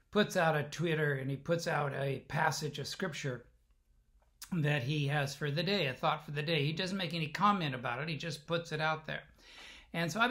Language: English